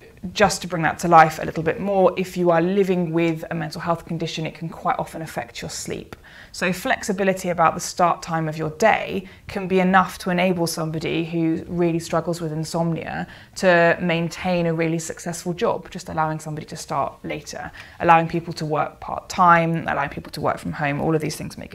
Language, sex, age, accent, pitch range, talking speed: English, female, 20-39, British, 160-185 Hz, 205 wpm